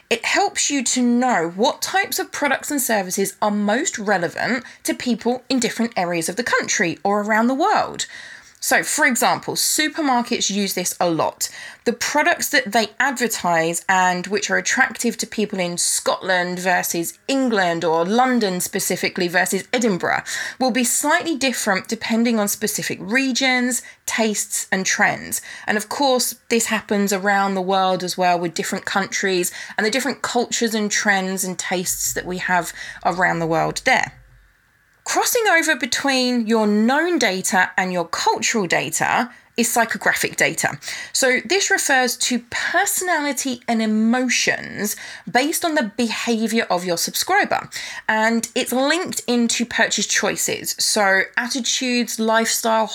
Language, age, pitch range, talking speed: English, 20-39, 195-260 Hz, 145 wpm